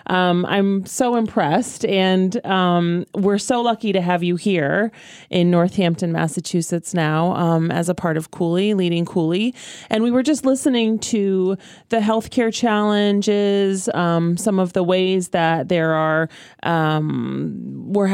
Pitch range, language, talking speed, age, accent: 170-210 Hz, English, 145 wpm, 30-49, American